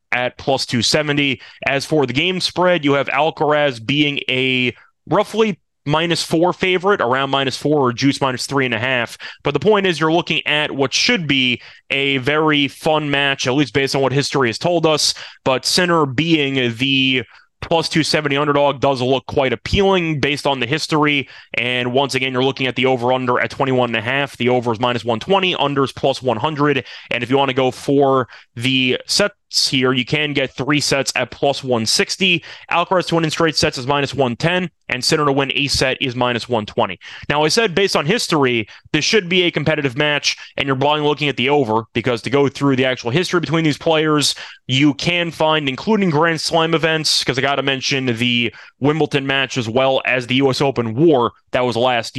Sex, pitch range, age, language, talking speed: male, 130-155 Hz, 20-39, English, 205 wpm